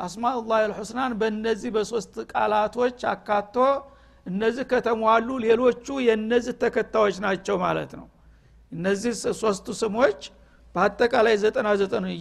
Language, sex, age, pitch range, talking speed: Amharic, male, 60-79, 200-235 Hz, 100 wpm